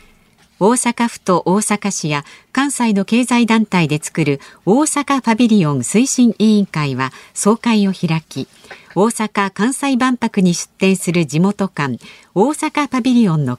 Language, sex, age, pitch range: Japanese, female, 50-69, 160-230 Hz